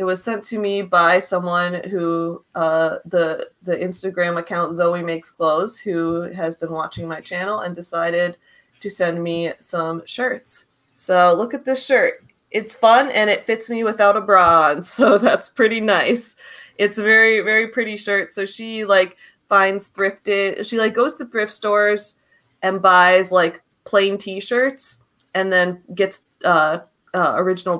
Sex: female